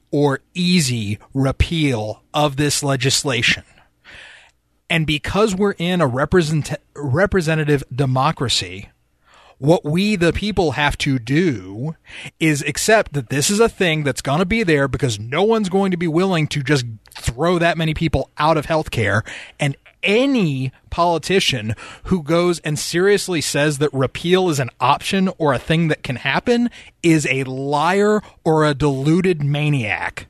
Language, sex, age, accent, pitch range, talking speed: English, male, 30-49, American, 135-185 Hz, 150 wpm